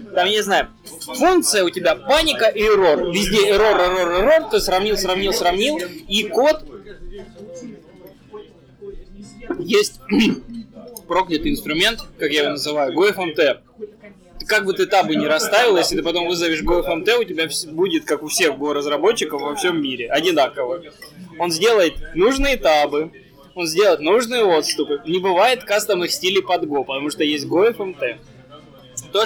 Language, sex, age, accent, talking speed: Russian, male, 20-39, native, 145 wpm